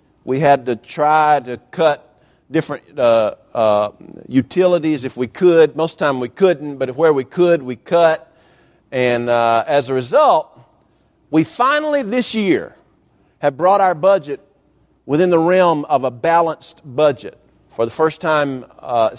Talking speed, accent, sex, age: 160 wpm, American, male, 40-59